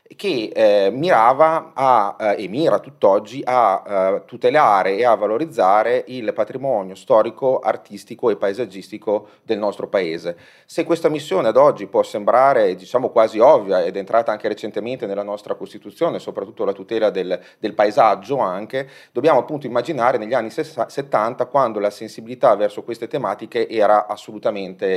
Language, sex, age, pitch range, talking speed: Italian, male, 30-49, 105-145 Hz, 150 wpm